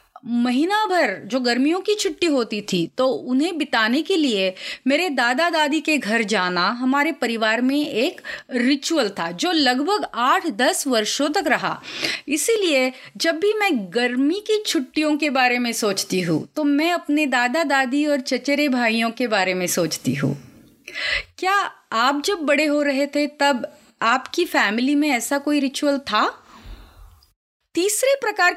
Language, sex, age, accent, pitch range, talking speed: Hindi, female, 30-49, native, 225-300 Hz, 155 wpm